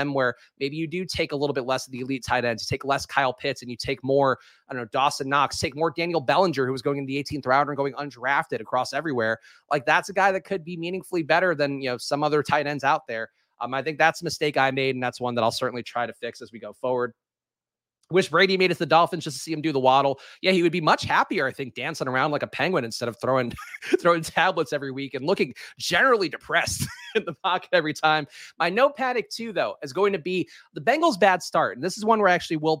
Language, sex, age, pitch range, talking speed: English, male, 30-49, 130-170 Hz, 270 wpm